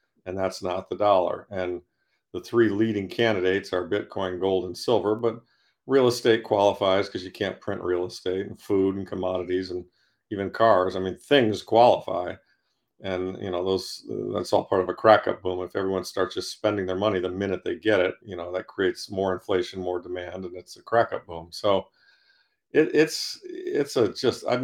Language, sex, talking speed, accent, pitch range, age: English, male, 190 wpm, American, 95-110 Hz, 50-69